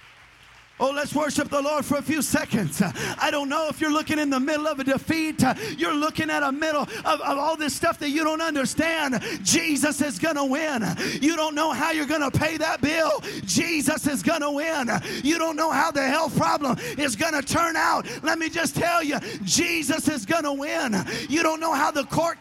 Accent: American